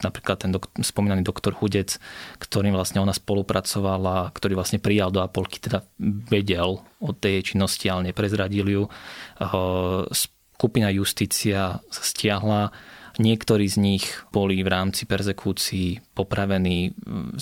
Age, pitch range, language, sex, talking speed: 20-39, 95-105 Hz, Slovak, male, 125 wpm